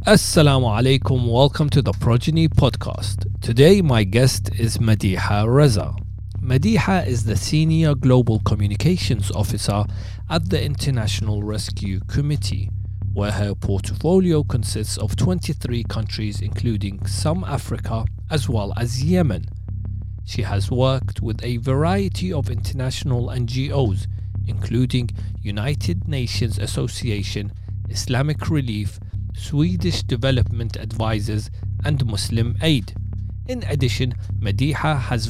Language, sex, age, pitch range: English, male, 40-59, 100-125 Hz